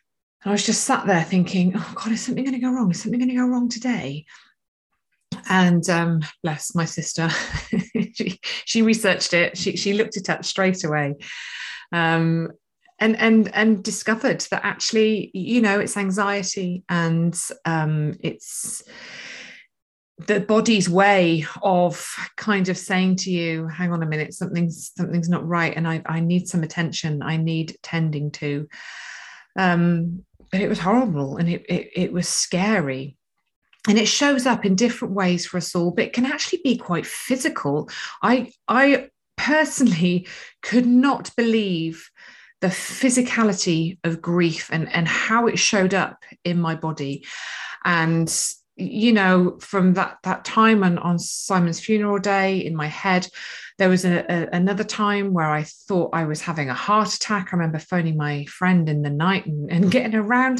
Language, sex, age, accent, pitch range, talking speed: English, female, 30-49, British, 170-215 Hz, 165 wpm